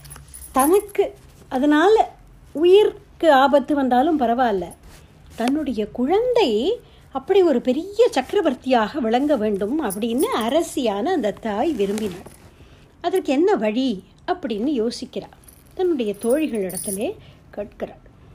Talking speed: 90 wpm